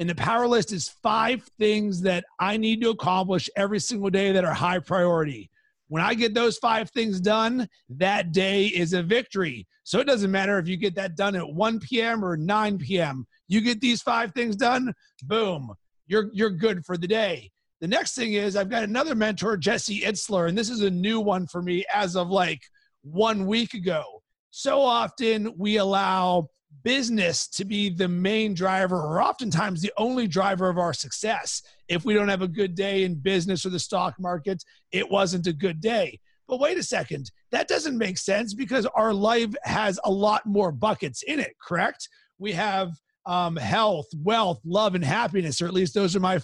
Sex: male